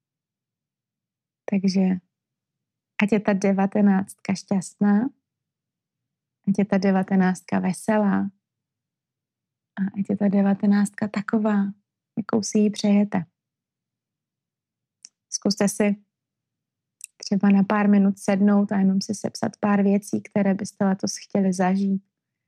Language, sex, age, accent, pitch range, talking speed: Czech, female, 30-49, native, 185-205 Hz, 105 wpm